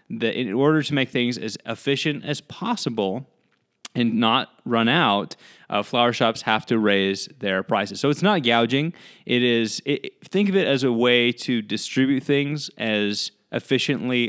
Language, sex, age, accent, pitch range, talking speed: English, male, 20-39, American, 110-155 Hz, 170 wpm